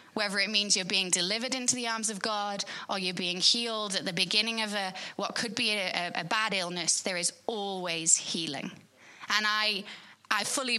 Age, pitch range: 20-39, 185-230 Hz